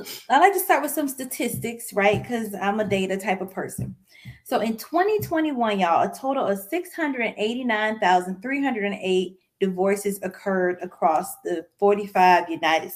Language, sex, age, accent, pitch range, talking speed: English, female, 30-49, American, 185-265 Hz, 135 wpm